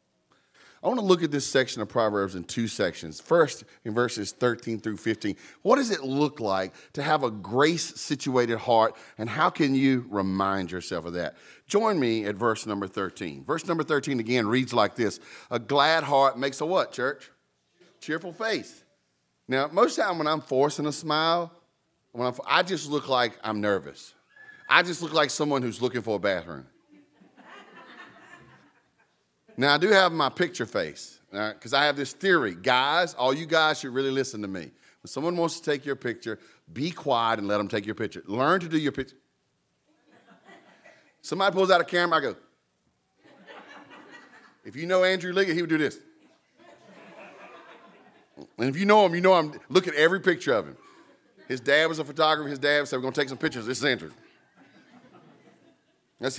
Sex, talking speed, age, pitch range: male, 185 wpm, 40-59, 115-160 Hz